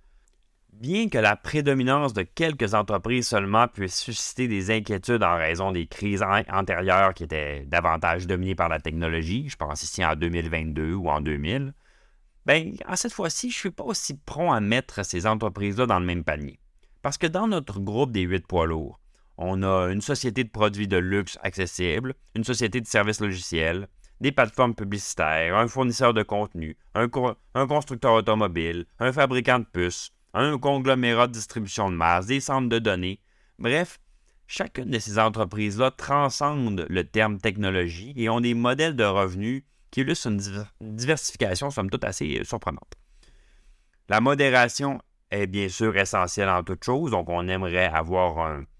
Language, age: French, 30-49